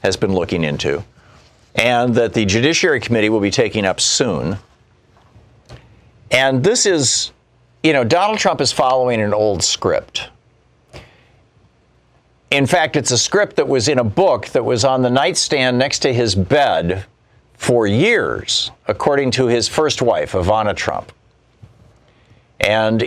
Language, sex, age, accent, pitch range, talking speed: English, male, 50-69, American, 110-125 Hz, 145 wpm